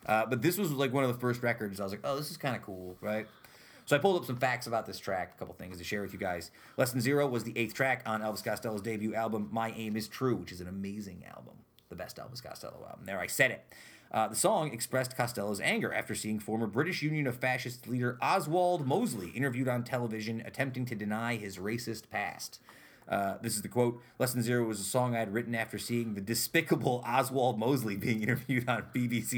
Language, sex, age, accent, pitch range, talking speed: English, male, 30-49, American, 110-130 Hz, 235 wpm